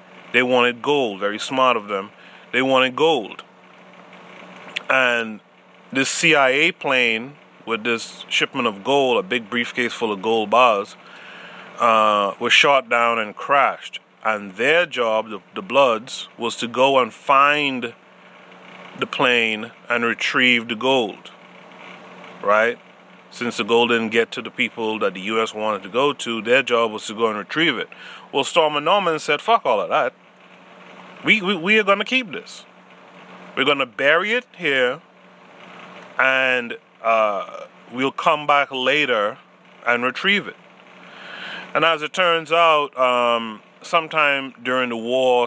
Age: 30-49